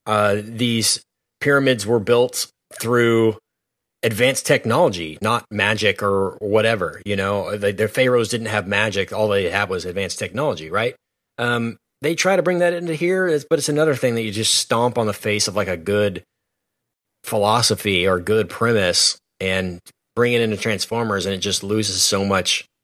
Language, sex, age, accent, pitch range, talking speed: English, male, 30-49, American, 105-130 Hz, 170 wpm